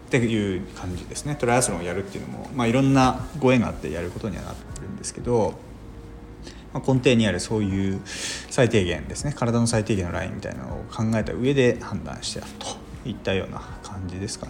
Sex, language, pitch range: male, Japanese, 95-125 Hz